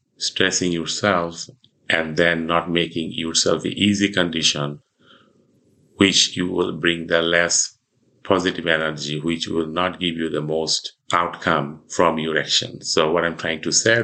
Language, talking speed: English, 150 wpm